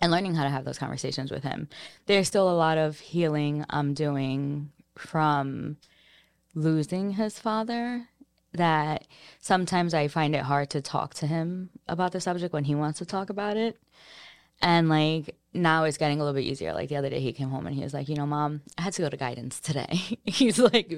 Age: 20-39